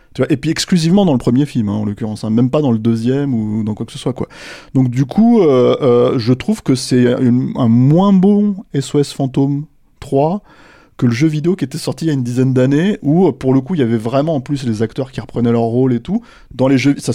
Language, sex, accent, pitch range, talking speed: French, male, French, 110-135 Hz, 260 wpm